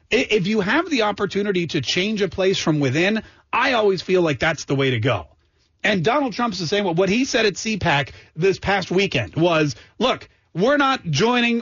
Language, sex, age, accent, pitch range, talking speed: English, male, 40-59, American, 160-225 Hz, 195 wpm